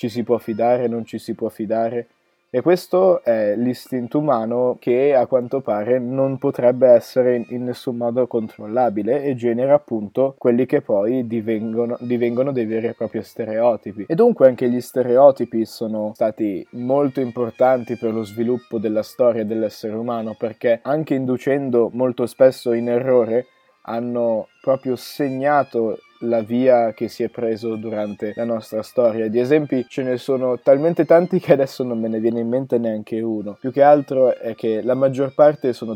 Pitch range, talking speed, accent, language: 115-130 Hz, 165 wpm, native, Italian